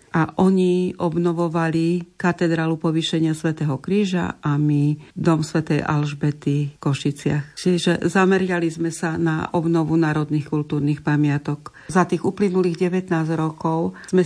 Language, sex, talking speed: Slovak, female, 120 wpm